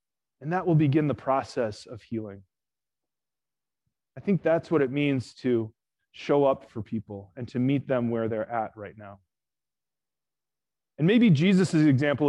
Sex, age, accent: male, 30-49, American